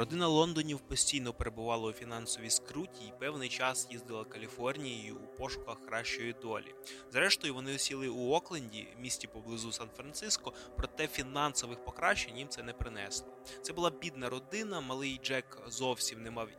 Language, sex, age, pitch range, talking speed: Ukrainian, male, 20-39, 120-135 Hz, 145 wpm